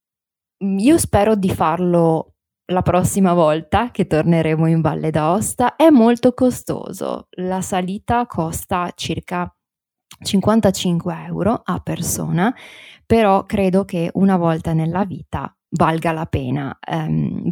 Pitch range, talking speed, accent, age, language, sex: 165-205 Hz, 115 wpm, native, 20-39, Italian, female